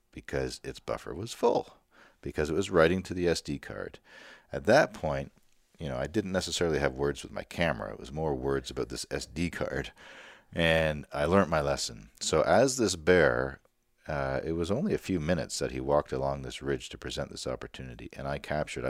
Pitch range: 65-80 Hz